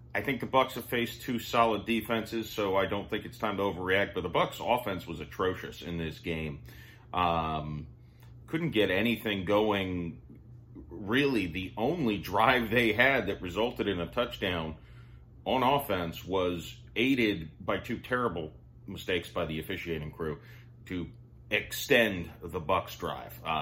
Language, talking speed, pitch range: English, 150 wpm, 85-115 Hz